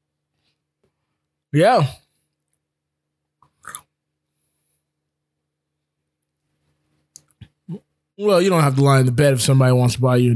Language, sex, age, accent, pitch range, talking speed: English, male, 20-39, American, 135-180 Hz, 100 wpm